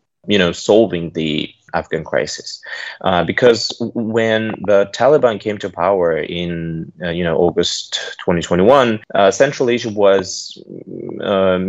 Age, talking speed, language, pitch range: 20-39, 130 wpm, English, 85-105 Hz